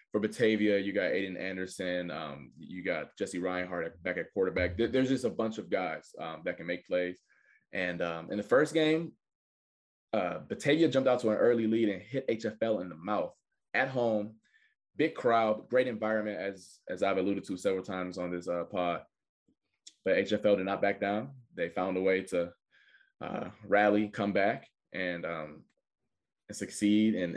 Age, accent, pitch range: 20-39, American, 100-130 Hz